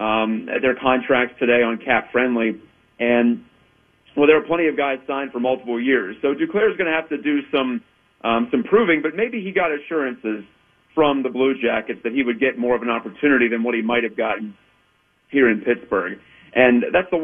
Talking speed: 205 wpm